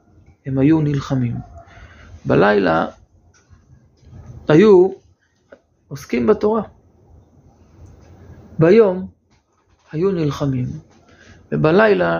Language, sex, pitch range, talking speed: Hebrew, male, 105-155 Hz, 55 wpm